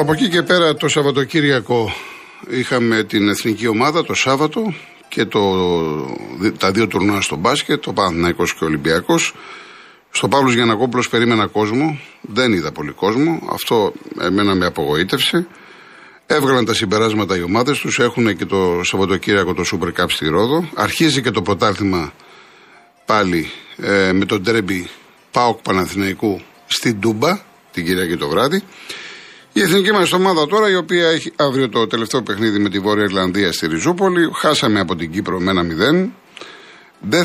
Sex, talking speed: male, 150 wpm